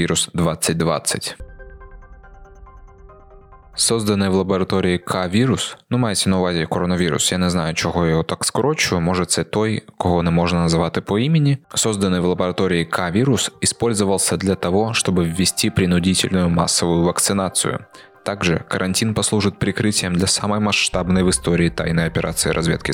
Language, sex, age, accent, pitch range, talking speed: Ukrainian, male, 20-39, native, 85-100 Hz, 135 wpm